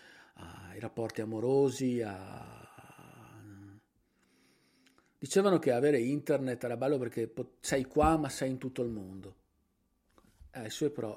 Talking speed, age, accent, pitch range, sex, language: 125 wpm, 40-59, native, 110-145 Hz, male, Italian